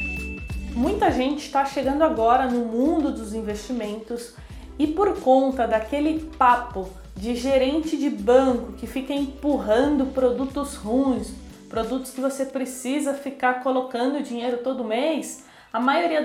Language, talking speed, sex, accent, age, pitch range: Portuguese, 125 wpm, female, Brazilian, 20-39, 250-310 Hz